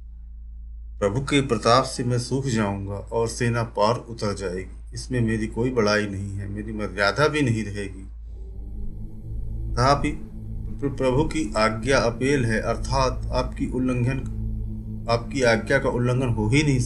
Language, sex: Hindi, male